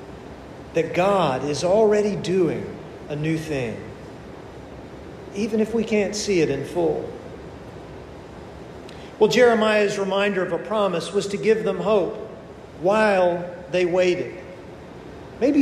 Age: 40-59